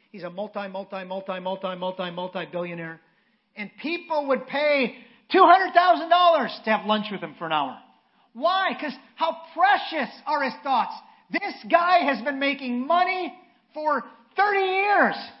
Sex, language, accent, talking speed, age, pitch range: male, English, American, 125 wpm, 40-59, 210-305 Hz